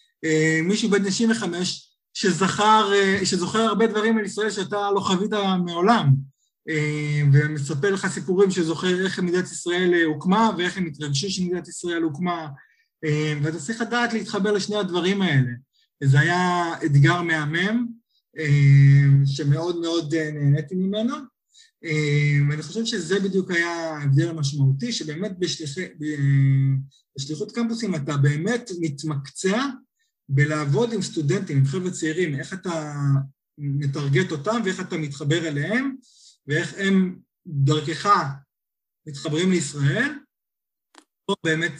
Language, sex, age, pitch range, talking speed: Hebrew, male, 20-39, 145-190 Hz, 110 wpm